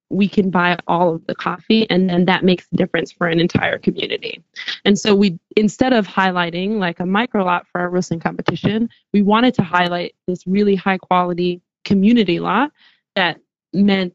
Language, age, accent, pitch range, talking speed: English, 20-39, American, 180-205 Hz, 180 wpm